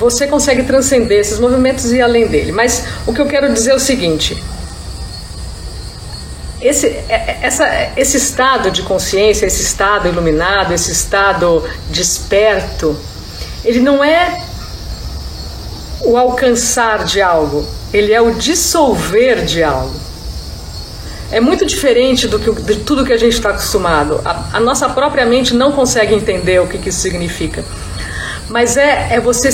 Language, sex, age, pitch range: Portuguese, female, 50-69, 195-265 Hz